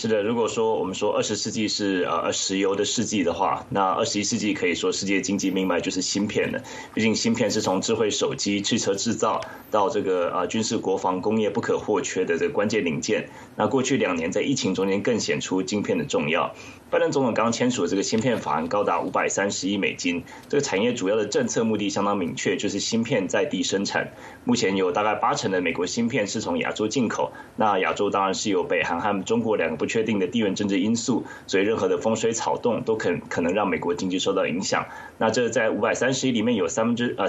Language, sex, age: Chinese, male, 20-39